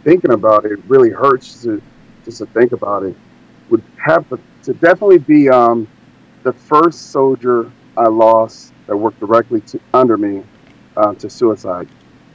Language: English